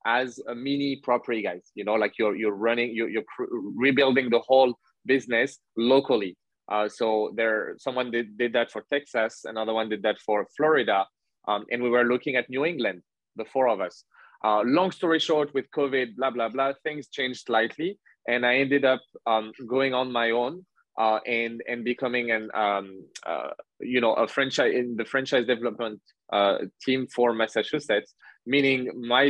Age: 20-39